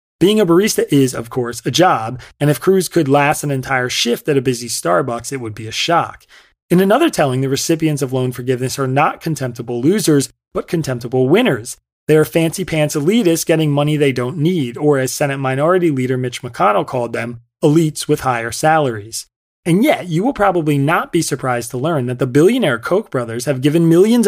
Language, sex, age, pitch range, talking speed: English, male, 30-49, 125-165 Hz, 200 wpm